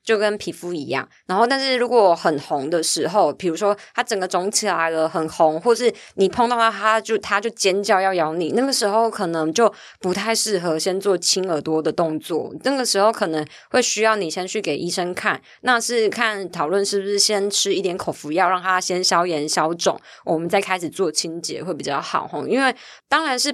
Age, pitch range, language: 20-39, 170-210 Hz, Chinese